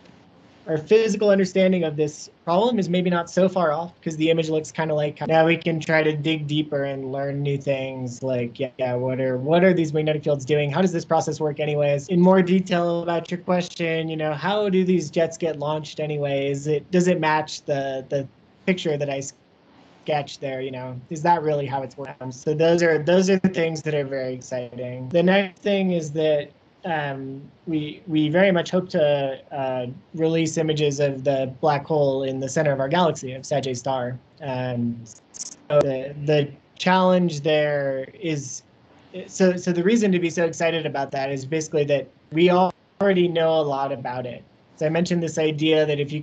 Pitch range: 140-170 Hz